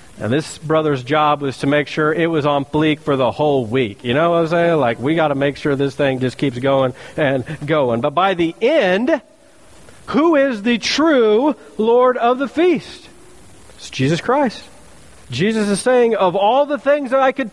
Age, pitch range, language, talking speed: 40-59, 145-230 Hz, English, 200 wpm